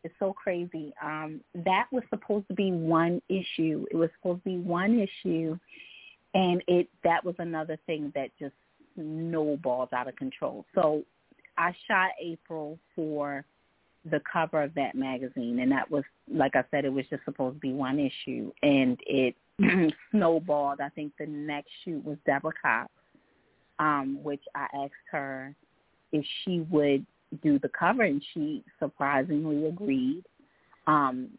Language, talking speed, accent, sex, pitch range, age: English, 155 wpm, American, female, 140-180 Hz, 30-49